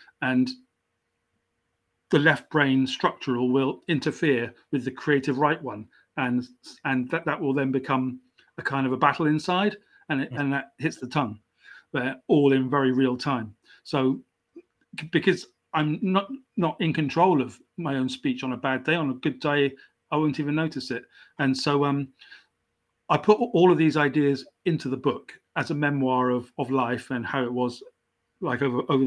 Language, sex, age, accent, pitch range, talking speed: English, male, 40-59, British, 130-155 Hz, 180 wpm